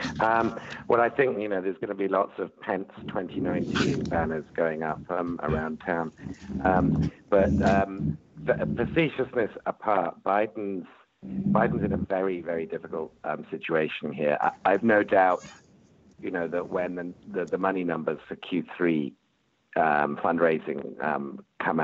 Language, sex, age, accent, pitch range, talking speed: English, male, 50-69, British, 75-95 Hz, 150 wpm